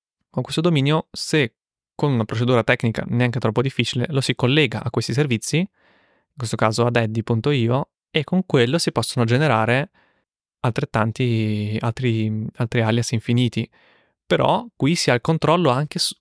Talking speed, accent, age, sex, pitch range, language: 150 wpm, native, 20-39, male, 110-125 Hz, Italian